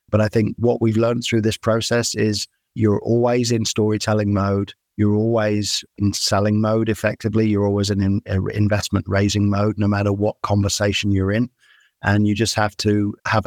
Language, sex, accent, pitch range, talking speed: English, male, British, 100-110 Hz, 175 wpm